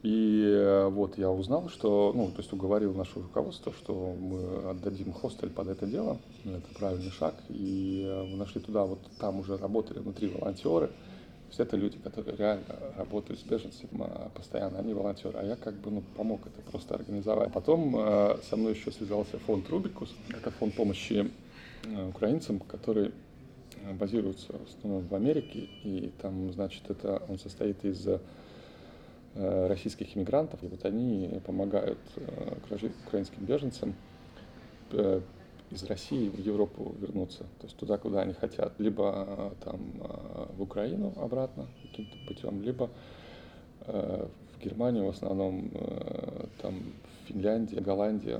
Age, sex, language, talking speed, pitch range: 20-39, male, Russian, 140 wpm, 95-110 Hz